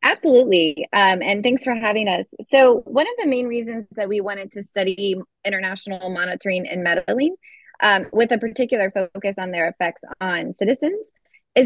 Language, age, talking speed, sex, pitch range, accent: English, 20-39, 170 wpm, female, 195-255 Hz, American